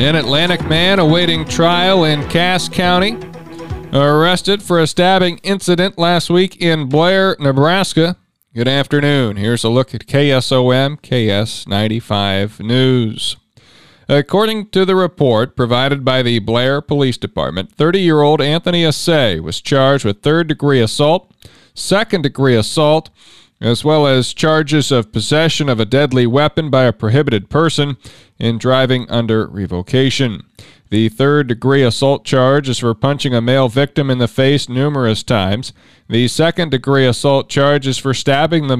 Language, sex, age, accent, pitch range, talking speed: English, male, 40-59, American, 120-155 Hz, 140 wpm